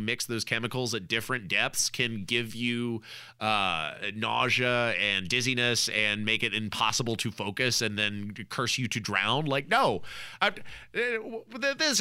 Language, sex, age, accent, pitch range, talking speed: English, male, 30-49, American, 115-170 Hz, 140 wpm